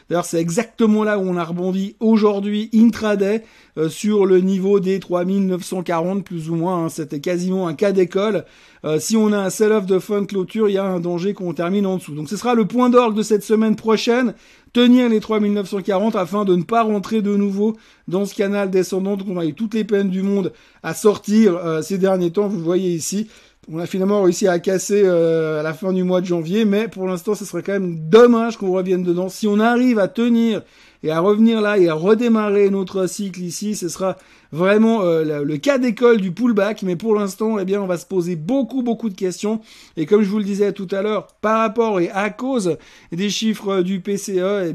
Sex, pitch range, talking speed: male, 180-215 Hz, 225 wpm